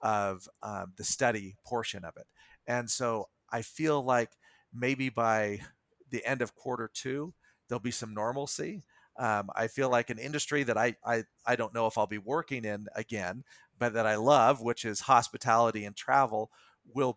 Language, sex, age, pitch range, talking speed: English, male, 40-59, 110-130 Hz, 180 wpm